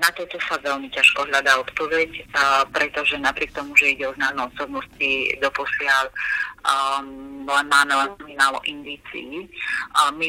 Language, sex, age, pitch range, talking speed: Slovak, female, 30-49, 135-155 Hz, 120 wpm